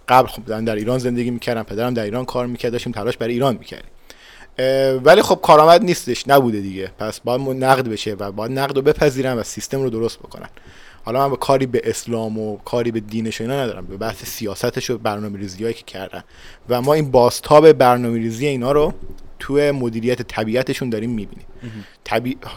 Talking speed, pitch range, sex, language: 175 wpm, 115-140 Hz, male, English